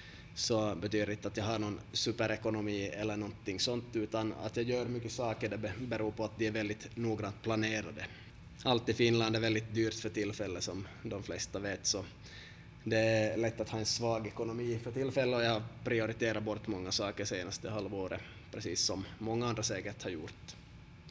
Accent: Finnish